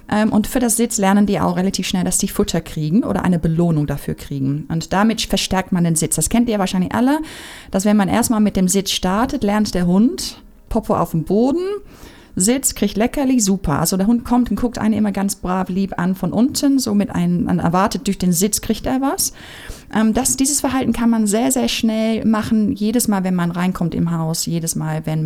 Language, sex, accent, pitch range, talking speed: German, female, German, 175-235 Hz, 215 wpm